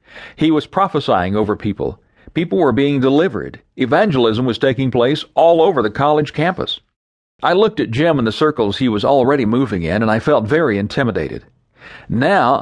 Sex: male